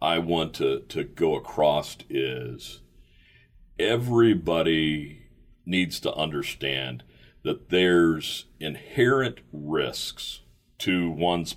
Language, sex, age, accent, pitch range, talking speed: English, male, 40-59, American, 70-90 Hz, 90 wpm